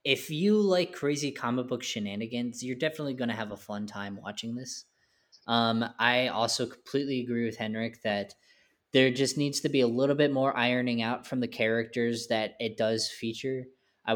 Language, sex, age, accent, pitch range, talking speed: English, male, 10-29, American, 110-135 Hz, 185 wpm